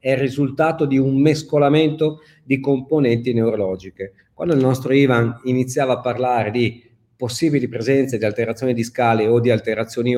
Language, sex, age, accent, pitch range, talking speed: Italian, male, 40-59, native, 115-145 Hz, 155 wpm